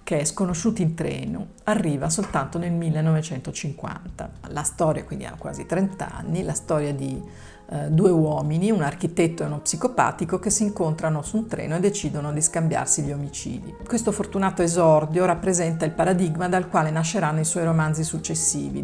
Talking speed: 165 wpm